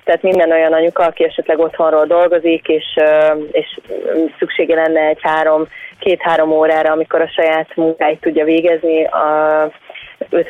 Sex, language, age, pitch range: female, Hungarian, 20-39, 160-175 Hz